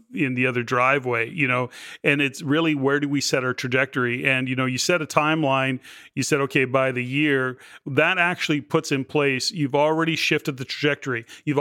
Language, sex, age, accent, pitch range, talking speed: English, male, 40-59, American, 130-160 Hz, 200 wpm